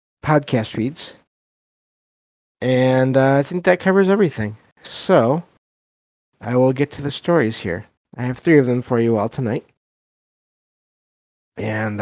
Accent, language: American, English